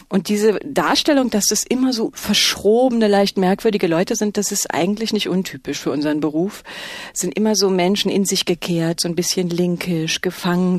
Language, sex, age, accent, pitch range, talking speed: German, female, 40-59, German, 160-205 Hz, 185 wpm